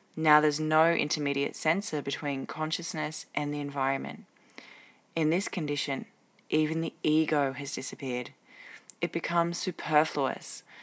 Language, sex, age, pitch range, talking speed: English, female, 20-39, 145-165 Hz, 115 wpm